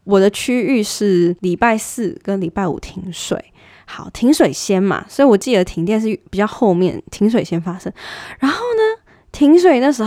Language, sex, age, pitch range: Chinese, female, 10-29, 185-255 Hz